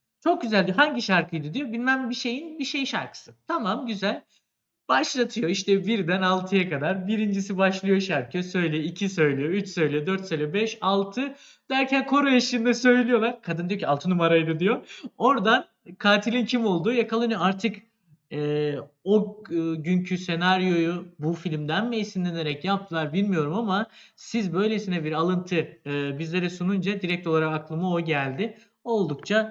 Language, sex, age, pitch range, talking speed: Turkish, male, 50-69, 160-225 Hz, 150 wpm